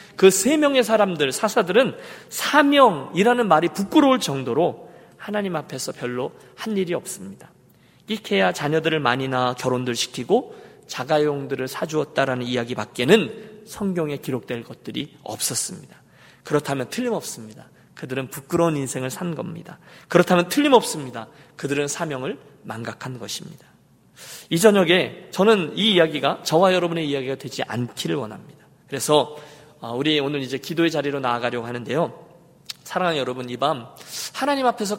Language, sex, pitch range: Korean, male, 130-195 Hz